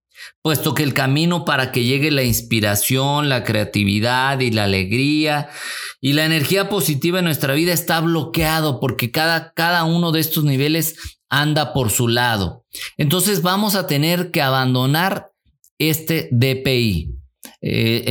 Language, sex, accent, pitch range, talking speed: Spanish, male, Mexican, 125-165 Hz, 145 wpm